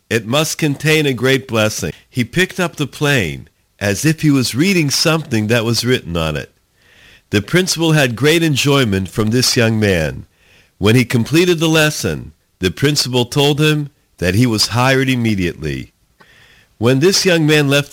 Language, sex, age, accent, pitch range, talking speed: English, male, 50-69, American, 100-150 Hz, 165 wpm